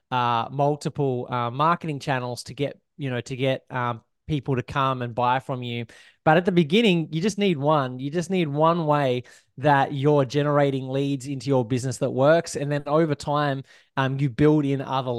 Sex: male